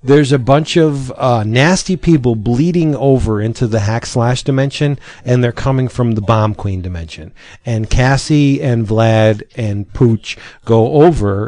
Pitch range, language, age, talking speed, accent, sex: 110-130 Hz, English, 40-59, 155 wpm, American, male